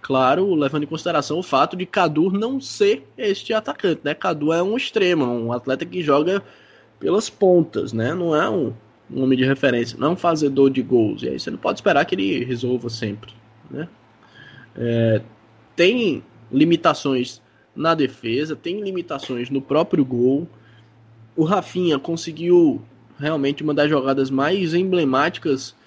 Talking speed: 155 wpm